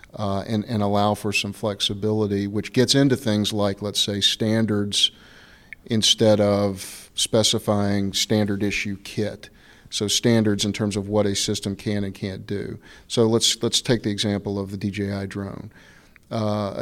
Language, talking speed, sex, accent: English, 155 wpm, male, American